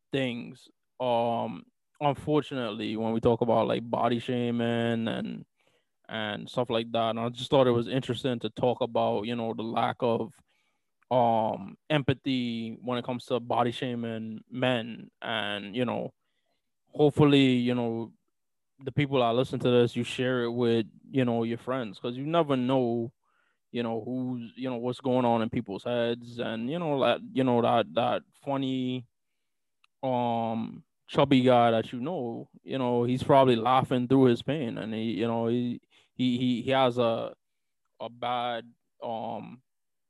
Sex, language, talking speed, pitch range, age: male, English, 165 wpm, 115-130 Hz, 20-39